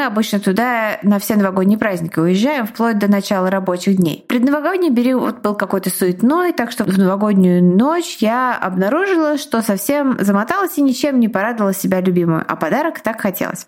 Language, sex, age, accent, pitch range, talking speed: Russian, female, 20-39, native, 200-270 Hz, 160 wpm